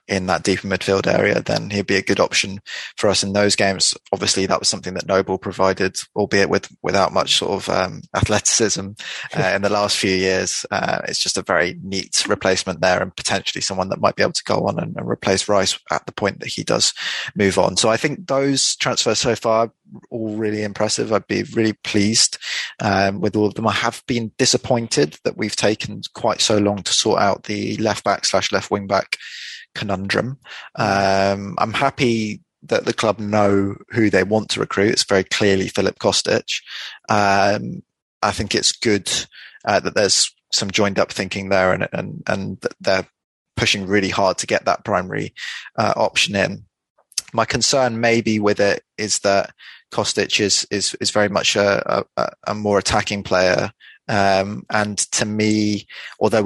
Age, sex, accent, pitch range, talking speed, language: 20-39, male, British, 95-110 Hz, 180 wpm, English